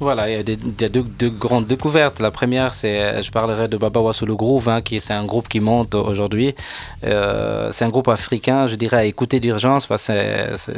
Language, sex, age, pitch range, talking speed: French, male, 20-39, 105-120 Hz, 225 wpm